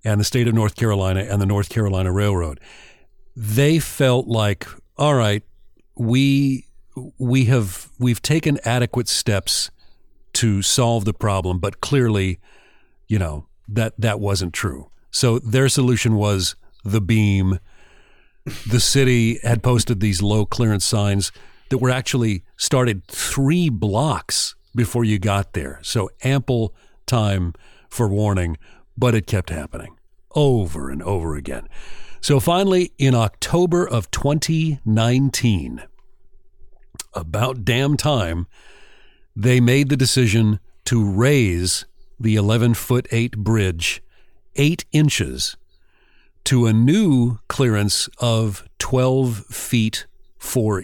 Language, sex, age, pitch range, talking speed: English, male, 40-59, 100-130 Hz, 120 wpm